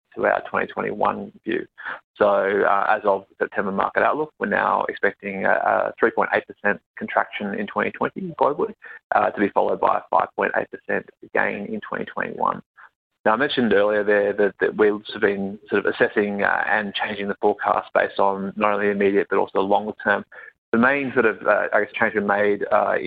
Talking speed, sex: 175 wpm, male